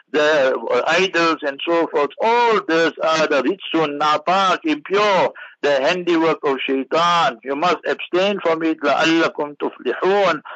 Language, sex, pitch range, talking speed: English, male, 150-195 Hz, 130 wpm